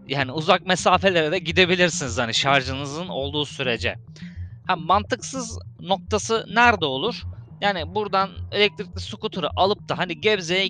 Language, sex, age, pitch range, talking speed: Turkish, male, 20-39, 115-155 Hz, 125 wpm